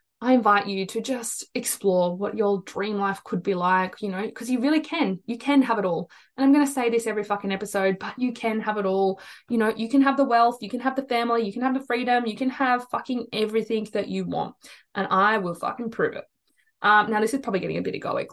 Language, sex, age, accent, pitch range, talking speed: English, female, 20-39, Australian, 195-250 Hz, 255 wpm